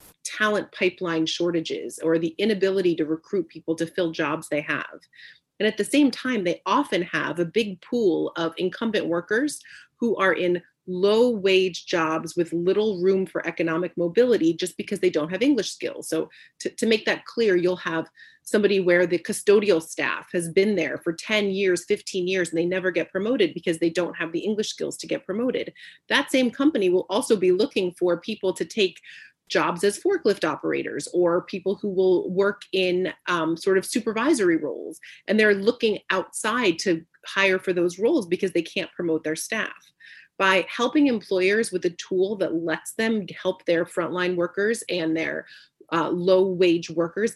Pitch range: 175-215 Hz